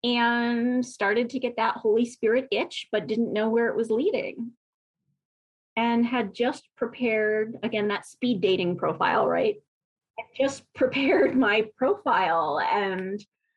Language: English